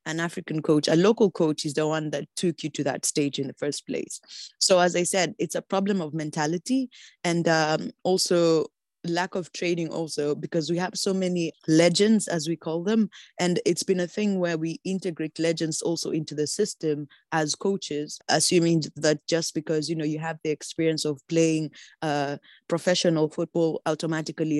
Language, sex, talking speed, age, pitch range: English, female, 185 wpm, 20-39, 155-175 Hz